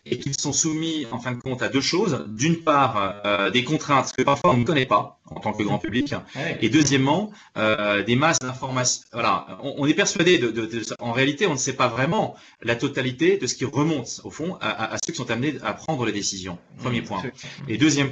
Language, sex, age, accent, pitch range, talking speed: French, male, 30-49, French, 120-160 Hz, 235 wpm